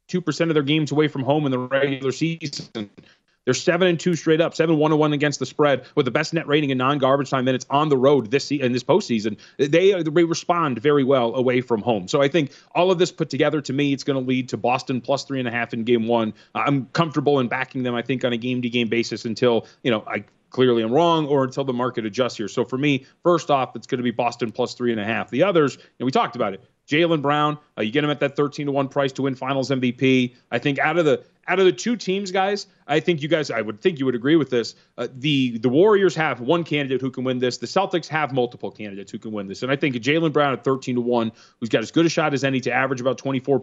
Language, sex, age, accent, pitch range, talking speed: English, male, 30-49, American, 120-150 Hz, 265 wpm